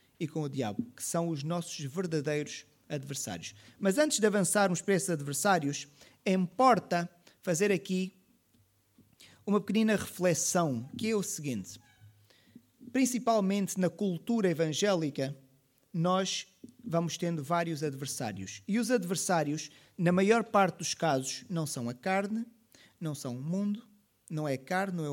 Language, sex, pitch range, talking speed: Portuguese, male, 145-190 Hz, 140 wpm